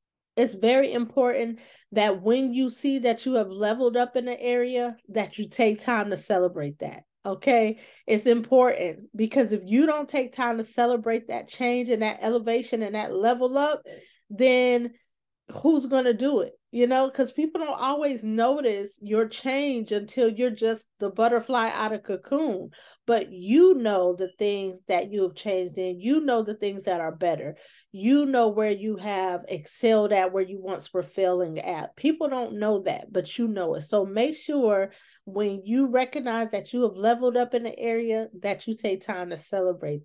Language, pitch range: English, 195-245 Hz